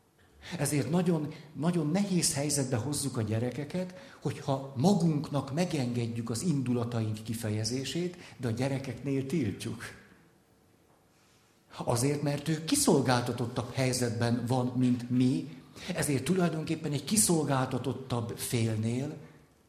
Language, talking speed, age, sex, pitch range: Hungarian, 95 wpm, 60-79, male, 120-150 Hz